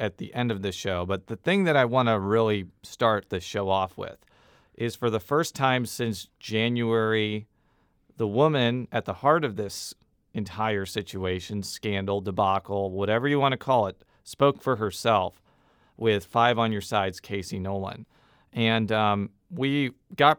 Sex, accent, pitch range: male, American, 100-125 Hz